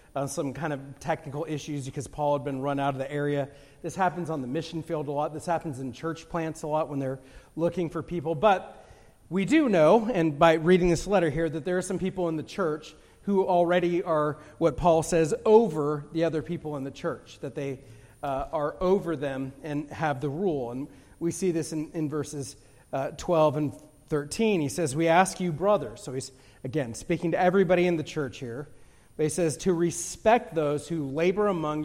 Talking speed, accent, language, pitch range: 210 wpm, American, English, 135-165 Hz